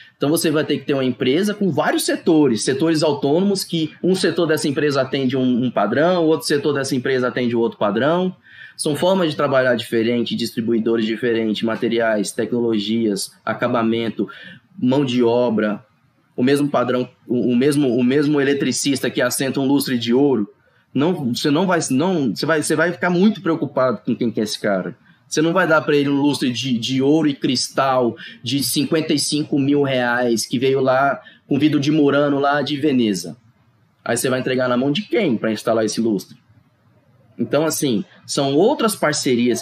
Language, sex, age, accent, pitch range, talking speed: Portuguese, male, 20-39, Brazilian, 120-155 Hz, 180 wpm